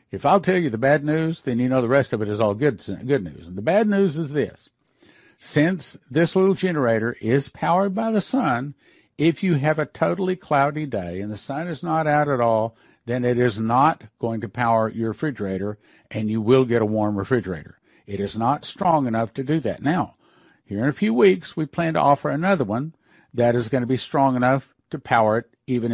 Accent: American